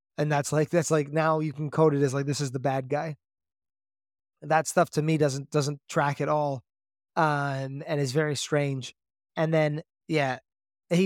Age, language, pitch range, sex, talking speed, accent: 20-39, English, 140-160 Hz, male, 190 wpm, American